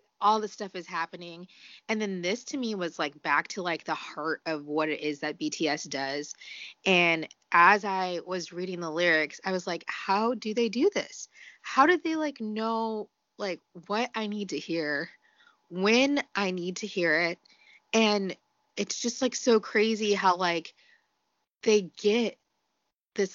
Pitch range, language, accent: 170-215 Hz, English, American